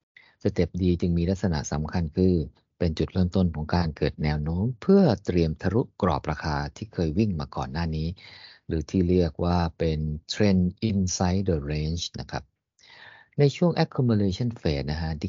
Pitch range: 85-115 Hz